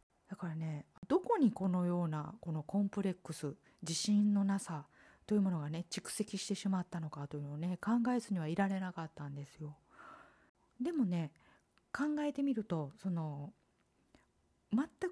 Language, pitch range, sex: Japanese, 160-215 Hz, female